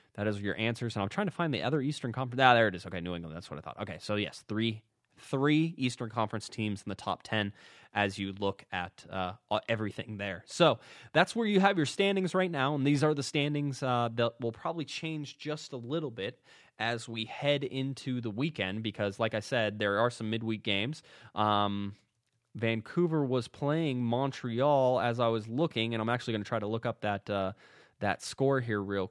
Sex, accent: male, American